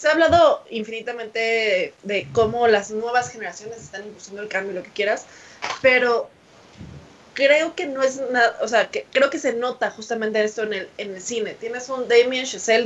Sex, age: female, 20-39